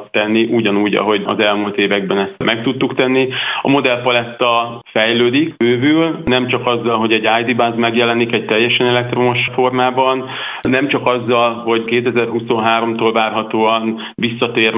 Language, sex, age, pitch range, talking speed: Hungarian, male, 40-59, 110-125 Hz, 130 wpm